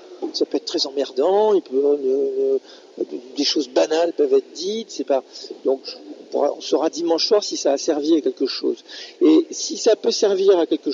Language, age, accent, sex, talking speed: French, 50-69, French, male, 195 wpm